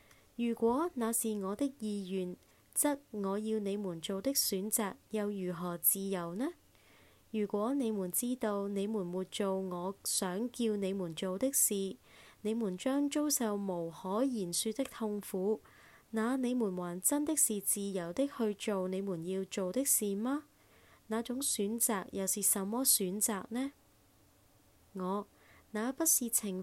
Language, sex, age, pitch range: Chinese, female, 20-39, 185-230 Hz